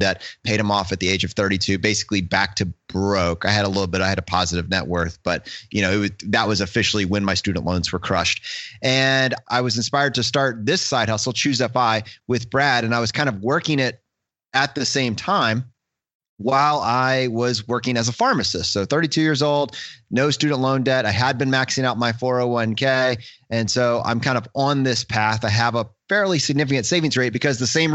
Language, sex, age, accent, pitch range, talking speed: English, male, 30-49, American, 110-135 Hz, 220 wpm